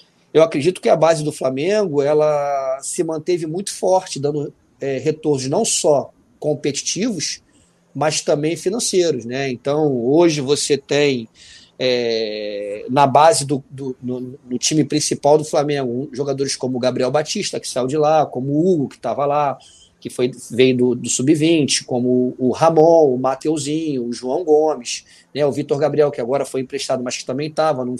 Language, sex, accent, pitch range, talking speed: Portuguese, male, Brazilian, 130-155 Hz, 155 wpm